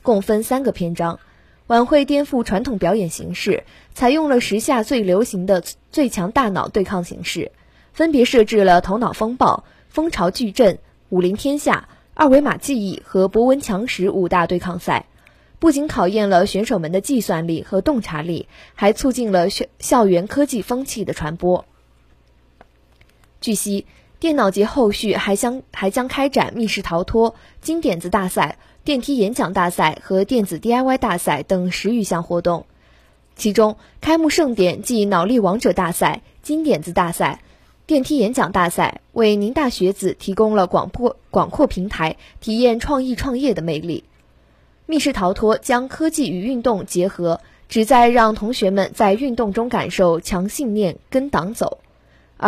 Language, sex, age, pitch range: Chinese, female, 20-39, 180-250 Hz